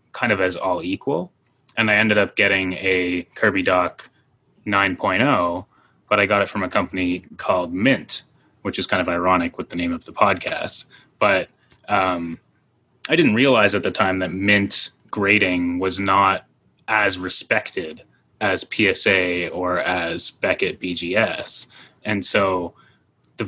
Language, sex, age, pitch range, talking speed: English, male, 20-39, 90-105 Hz, 150 wpm